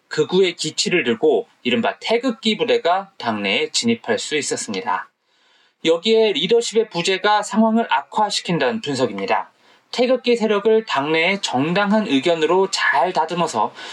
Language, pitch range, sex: Korean, 185-240 Hz, male